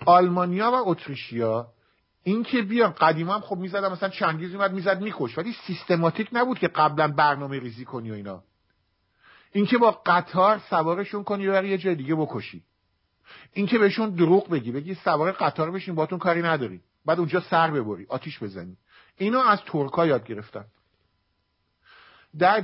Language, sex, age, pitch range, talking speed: English, male, 50-69, 125-185 Hz, 155 wpm